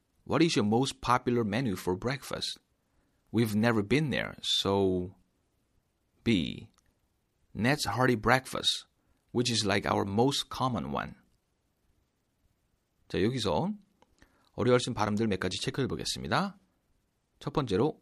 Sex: male